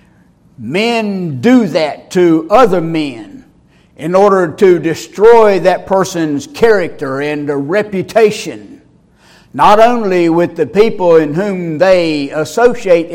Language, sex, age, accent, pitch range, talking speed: English, male, 60-79, American, 160-200 Hz, 110 wpm